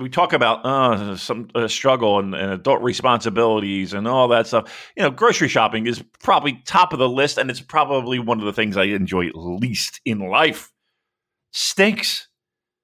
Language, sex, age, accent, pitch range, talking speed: English, male, 40-59, American, 120-185 Hz, 180 wpm